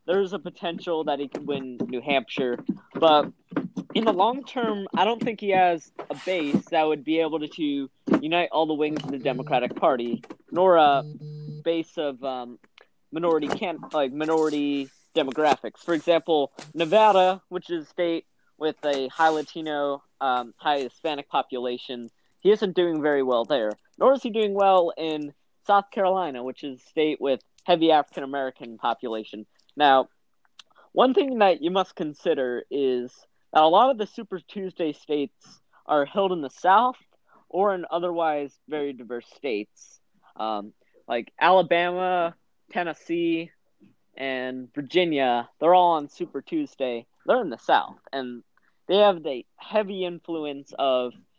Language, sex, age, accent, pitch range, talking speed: English, male, 30-49, American, 135-175 Hz, 150 wpm